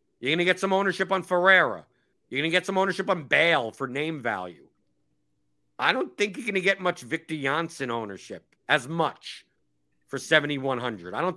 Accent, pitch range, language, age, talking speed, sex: American, 135-180 Hz, English, 50-69, 190 wpm, male